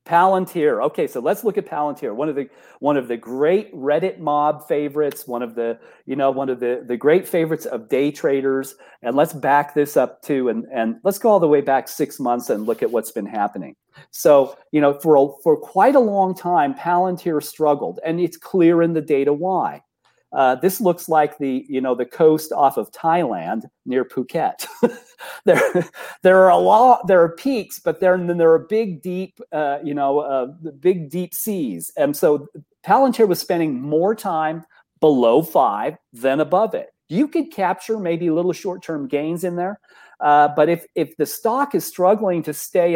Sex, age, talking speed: male, 40-59, 195 wpm